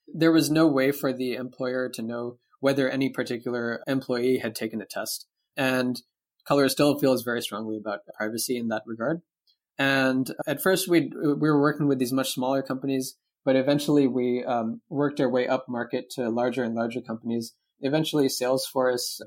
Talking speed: 180 wpm